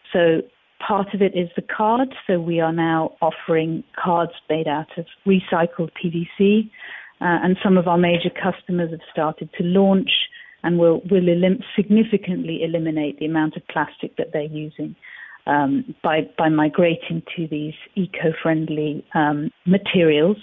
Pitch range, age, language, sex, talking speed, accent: 165-195 Hz, 40-59, English, female, 150 wpm, British